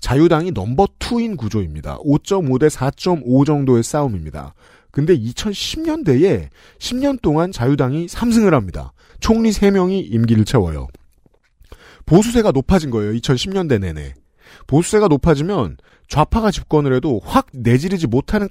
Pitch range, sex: 110-185 Hz, male